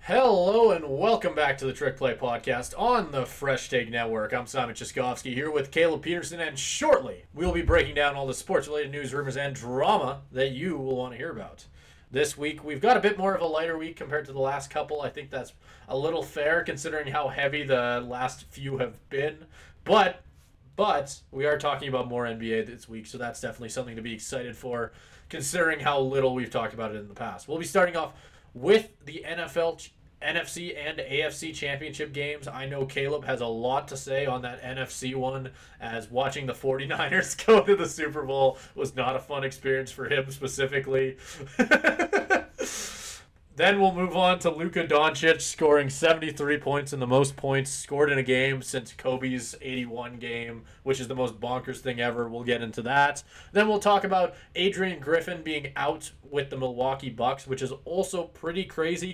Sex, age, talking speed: male, 20-39, 195 wpm